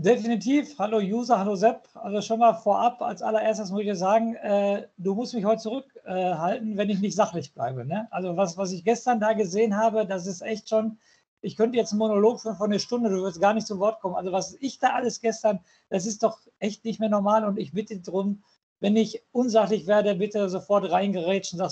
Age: 50-69